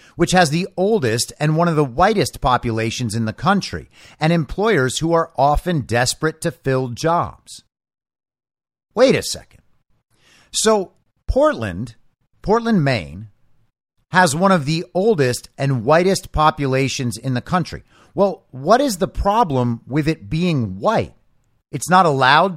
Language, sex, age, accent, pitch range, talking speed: English, male, 50-69, American, 125-185 Hz, 140 wpm